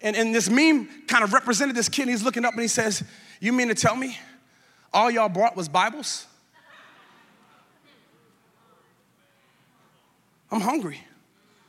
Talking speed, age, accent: 145 wpm, 30-49, American